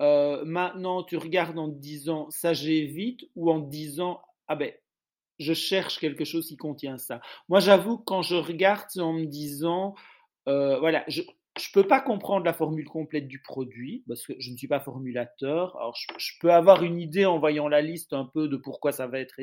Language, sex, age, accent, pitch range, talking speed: French, male, 40-59, French, 135-165 Hz, 205 wpm